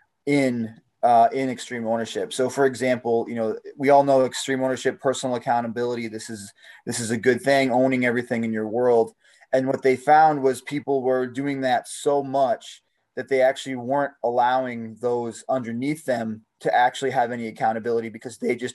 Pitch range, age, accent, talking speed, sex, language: 120-135 Hz, 20-39, American, 180 wpm, male, English